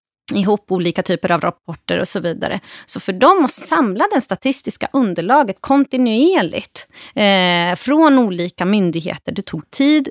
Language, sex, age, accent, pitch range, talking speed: Swedish, female, 30-49, native, 185-275 Hz, 135 wpm